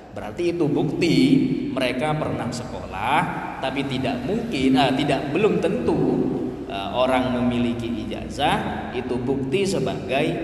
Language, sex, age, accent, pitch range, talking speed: Indonesian, male, 20-39, native, 125-170 Hz, 115 wpm